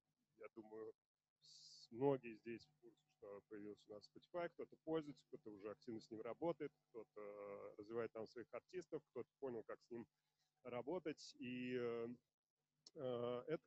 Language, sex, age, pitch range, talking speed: Russian, male, 30-49, 115-150 Hz, 140 wpm